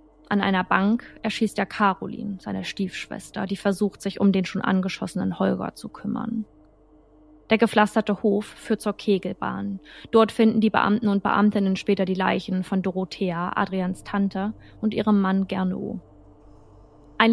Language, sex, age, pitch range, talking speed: German, female, 20-39, 155-210 Hz, 145 wpm